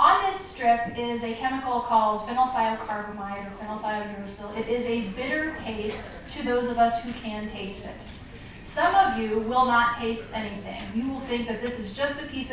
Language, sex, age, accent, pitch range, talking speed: English, female, 30-49, American, 225-260 Hz, 185 wpm